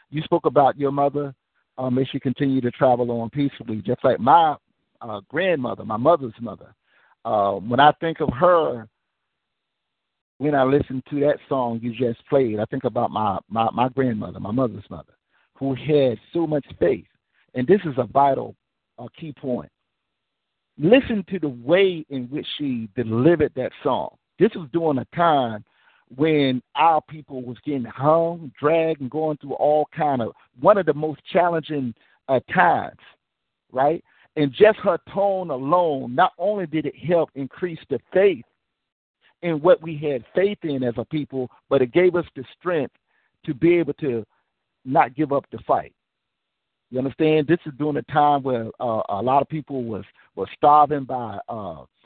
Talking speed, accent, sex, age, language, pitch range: 175 wpm, American, male, 50-69, English, 125-155 Hz